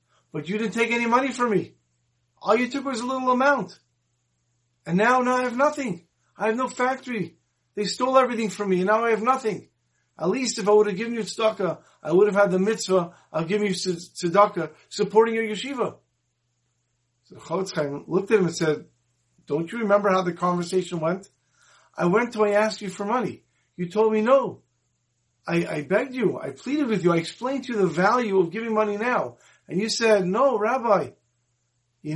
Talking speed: 200 wpm